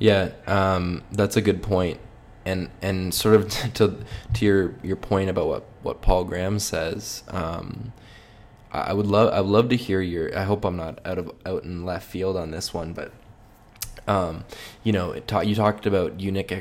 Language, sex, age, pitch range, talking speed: English, male, 20-39, 90-105 Hz, 190 wpm